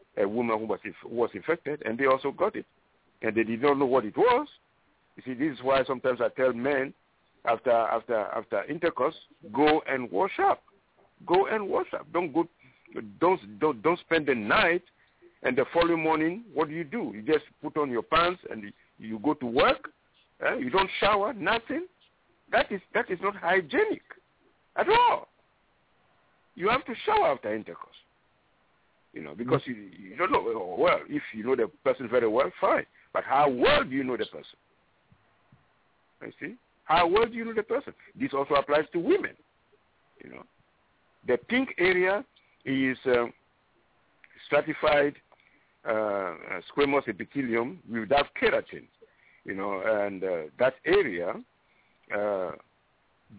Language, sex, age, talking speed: English, male, 50-69, 165 wpm